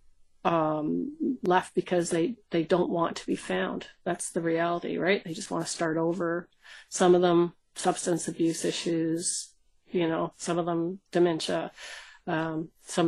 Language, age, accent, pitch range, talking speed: English, 40-59, American, 165-195 Hz, 155 wpm